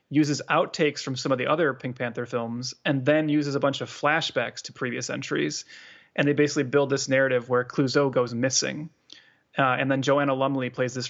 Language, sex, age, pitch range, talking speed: English, male, 30-49, 125-150 Hz, 200 wpm